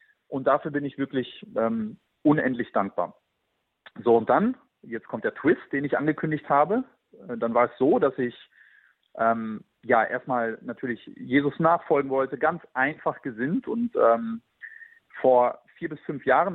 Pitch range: 135-200 Hz